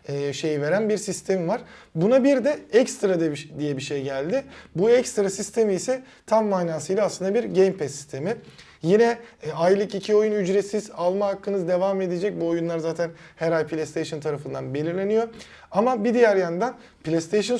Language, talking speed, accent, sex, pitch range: Turkish, 155 wpm, native, male, 165-215 Hz